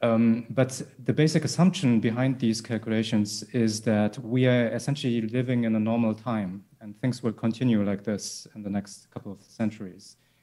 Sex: male